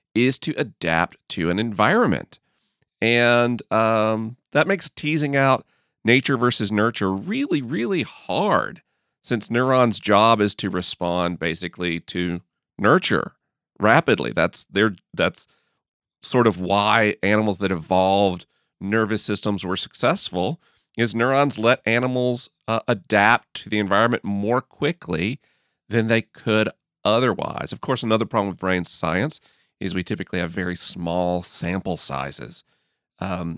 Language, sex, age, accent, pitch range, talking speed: English, male, 40-59, American, 90-115 Hz, 130 wpm